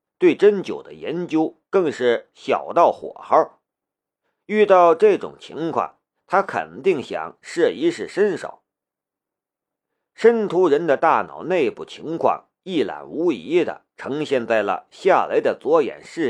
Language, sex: Chinese, male